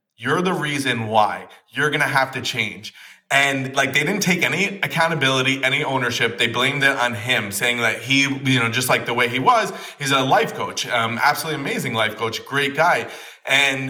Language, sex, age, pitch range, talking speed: English, male, 30-49, 120-150 Hz, 205 wpm